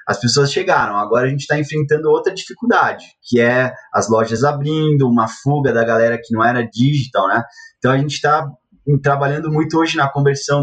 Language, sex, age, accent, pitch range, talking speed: Portuguese, male, 20-39, Brazilian, 115-145 Hz, 185 wpm